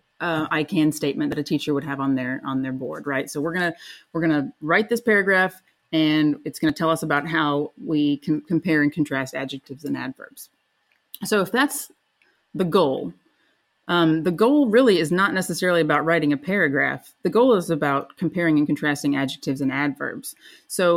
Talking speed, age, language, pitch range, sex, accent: 185 wpm, 30-49, English, 150-195 Hz, female, American